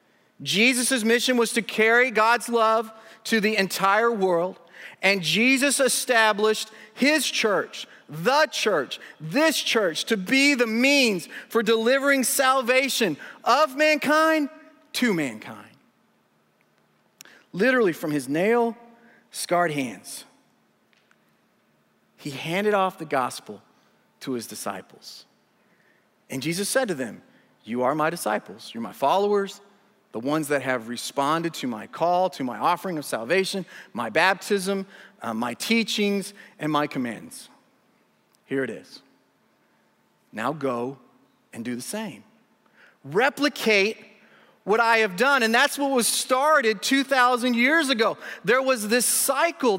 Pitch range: 195-265 Hz